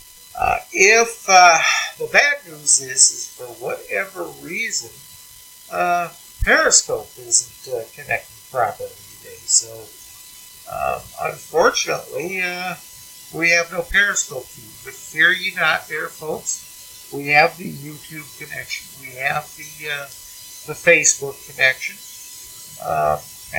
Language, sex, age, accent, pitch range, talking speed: English, male, 60-79, American, 140-195 Hz, 115 wpm